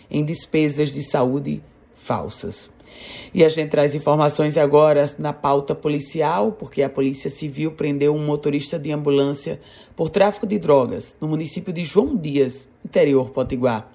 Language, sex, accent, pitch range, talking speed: Portuguese, female, Brazilian, 140-170 Hz, 145 wpm